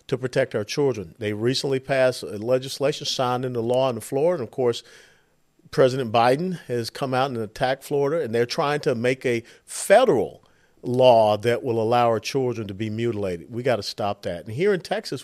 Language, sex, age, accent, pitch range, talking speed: English, male, 50-69, American, 120-170 Hz, 195 wpm